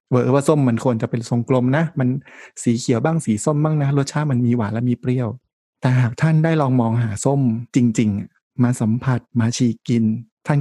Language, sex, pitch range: Thai, male, 115-130 Hz